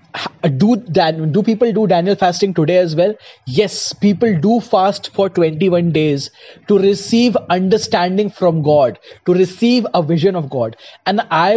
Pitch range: 160-215 Hz